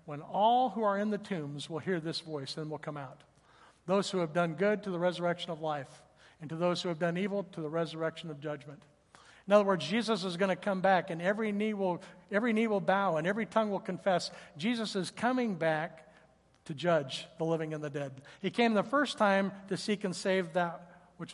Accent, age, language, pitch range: American, 60-79, English, 160-190 Hz